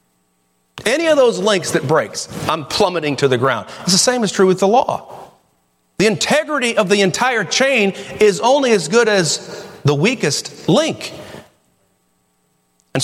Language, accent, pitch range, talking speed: English, American, 145-215 Hz, 155 wpm